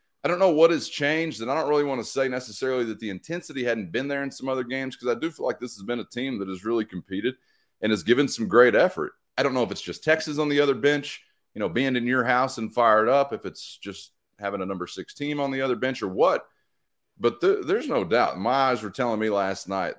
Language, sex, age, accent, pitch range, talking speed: English, male, 30-49, American, 110-140 Hz, 265 wpm